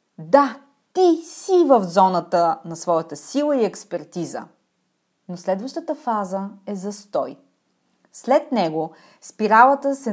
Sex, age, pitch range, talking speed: female, 30-49, 195-275 Hz, 115 wpm